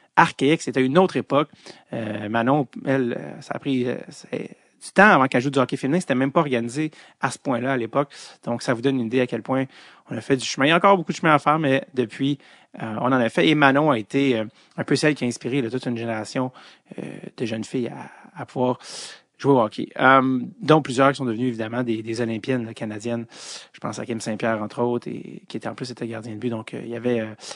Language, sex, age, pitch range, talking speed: English, male, 30-49, 120-150 Hz, 255 wpm